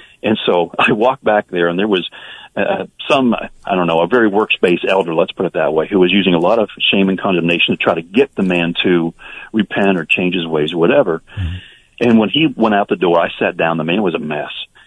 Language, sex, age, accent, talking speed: English, male, 40-59, American, 250 wpm